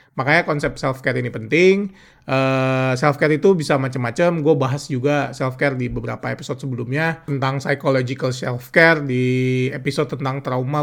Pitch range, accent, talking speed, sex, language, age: 130-150 Hz, native, 160 wpm, male, Indonesian, 30-49